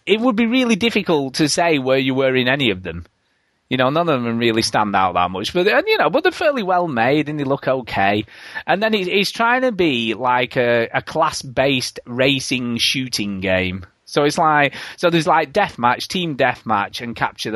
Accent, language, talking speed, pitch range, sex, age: British, English, 210 wpm, 110-155 Hz, male, 30-49